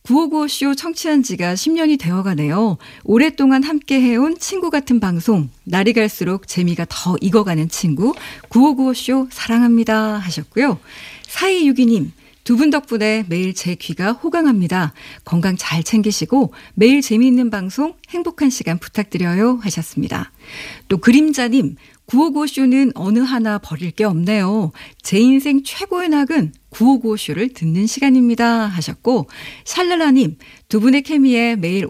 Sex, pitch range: female, 185-270 Hz